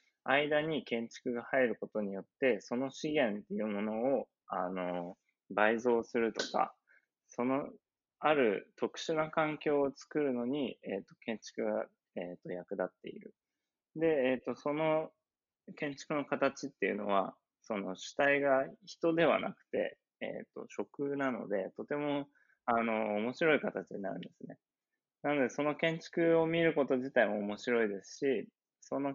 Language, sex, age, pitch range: Japanese, male, 20-39, 105-150 Hz